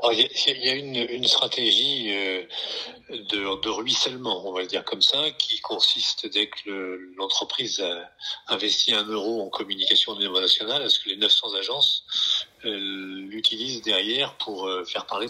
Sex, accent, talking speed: male, French, 165 wpm